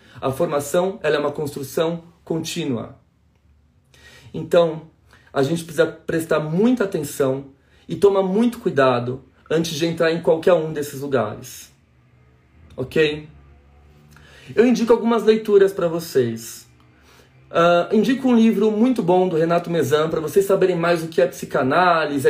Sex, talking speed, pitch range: male, 130 wpm, 135-195 Hz